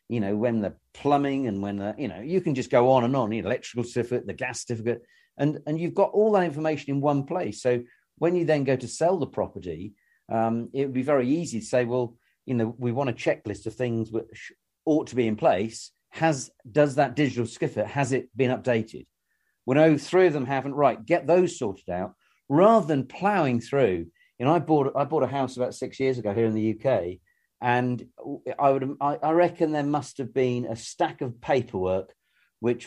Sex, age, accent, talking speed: male, 40-59, British, 225 wpm